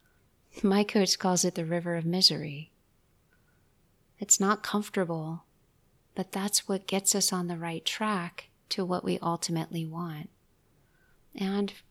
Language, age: English, 30-49